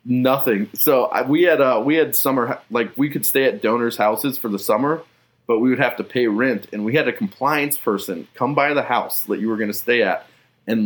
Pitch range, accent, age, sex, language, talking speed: 105-130 Hz, American, 20-39, male, English, 240 wpm